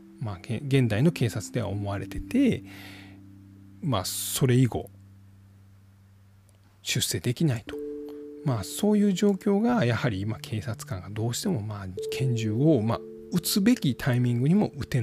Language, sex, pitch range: Japanese, male, 100-145 Hz